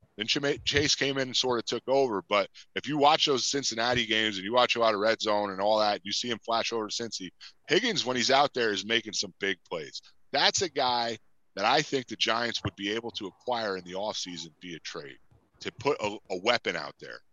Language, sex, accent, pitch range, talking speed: English, male, American, 100-120 Hz, 240 wpm